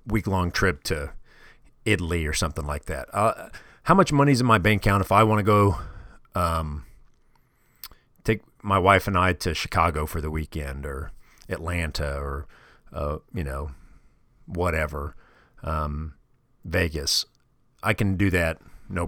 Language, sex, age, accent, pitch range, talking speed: English, male, 40-59, American, 80-100 Hz, 145 wpm